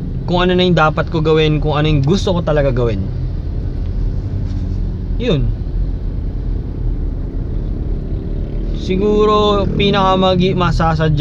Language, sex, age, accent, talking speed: Filipino, male, 20-39, native, 95 wpm